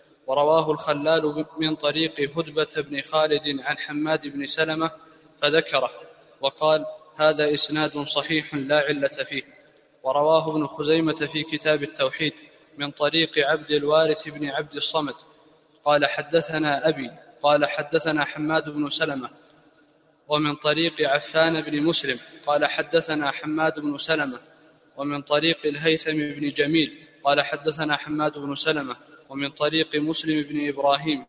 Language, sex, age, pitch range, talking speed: Arabic, male, 20-39, 145-155 Hz, 125 wpm